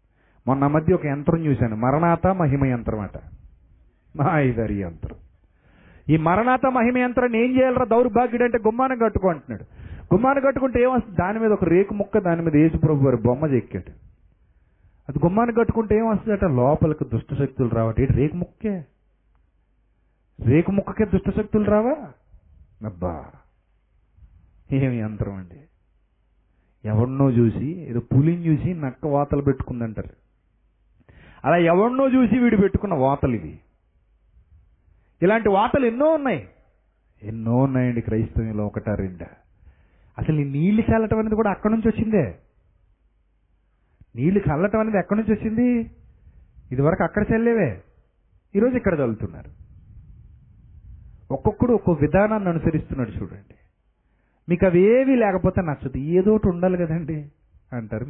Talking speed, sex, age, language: 120 wpm, male, 40-59, Telugu